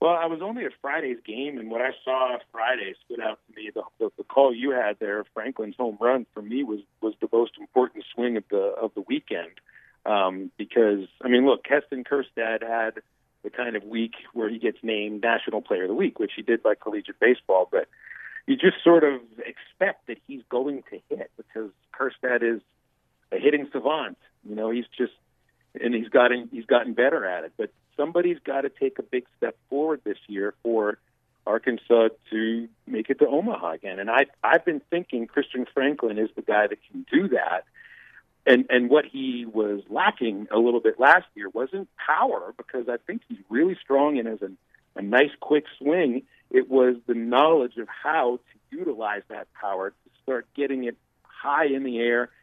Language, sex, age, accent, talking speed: English, male, 50-69, American, 195 wpm